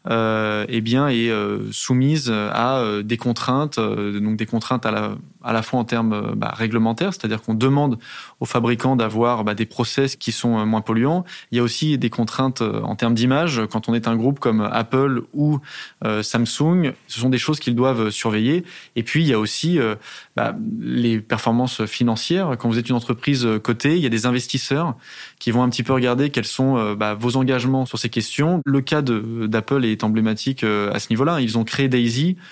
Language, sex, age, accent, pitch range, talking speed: French, male, 20-39, French, 110-135 Hz, 200 wpm